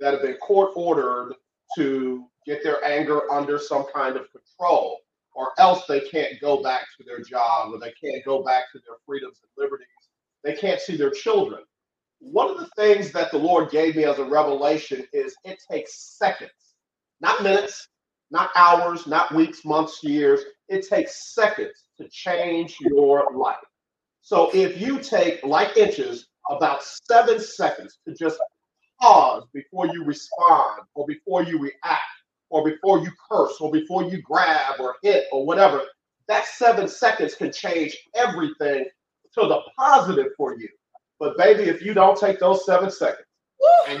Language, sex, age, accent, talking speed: English, male, 40-59, American, 160 wpm